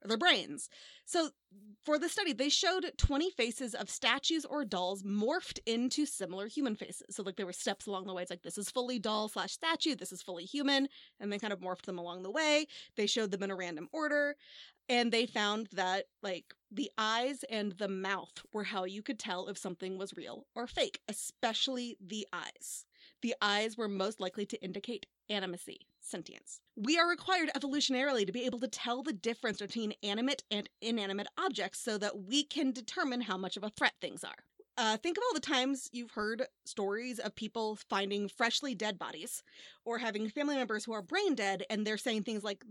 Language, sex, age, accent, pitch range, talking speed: English, female, 30-49, American, 200-270 Hz, 200 wpm